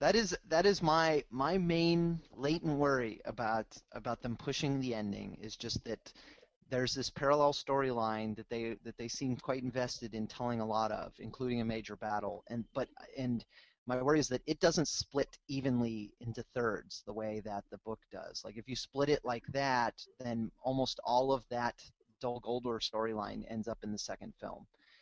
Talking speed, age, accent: 185 wpm, 30-49, American